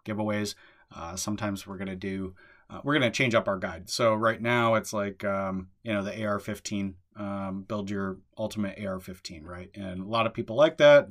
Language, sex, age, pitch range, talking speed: English, male, 30-49, 100-115 Hz, 215 wpm